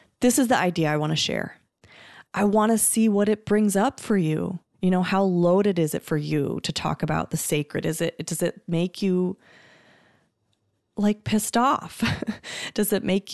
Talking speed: 195 wpm